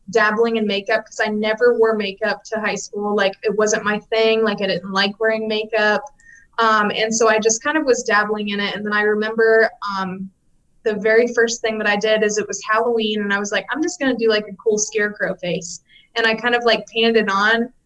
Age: 20-39